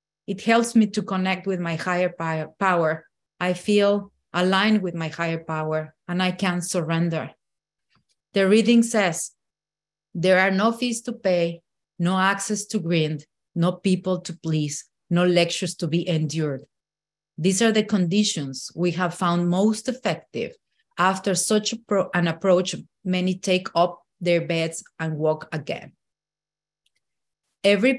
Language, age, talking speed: English, 30-49, 135 wpm